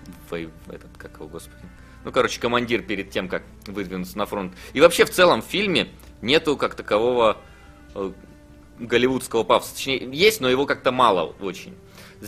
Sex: male